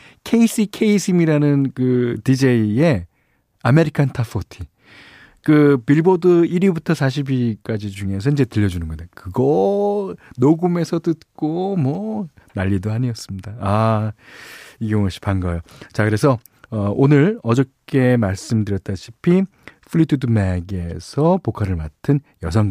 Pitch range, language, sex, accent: 95-155 Hz, Korean, male, native